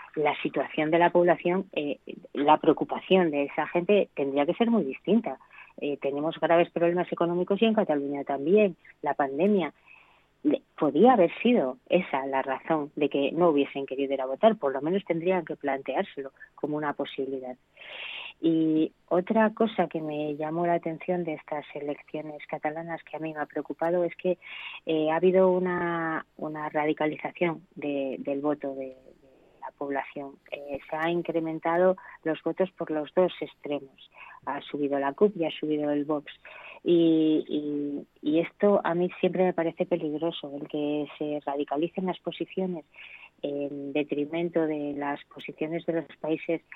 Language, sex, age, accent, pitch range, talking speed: Spanish, female, 30-49, Spanish, 145-175 Hz, 160 wpm